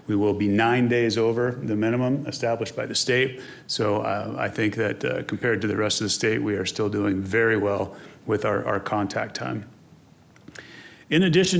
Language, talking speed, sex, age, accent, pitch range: English, 195 wpm, male, 30-49, American, 105-125 Hz